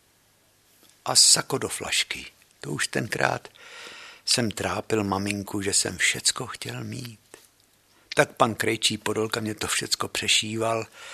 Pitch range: 105-130 Hz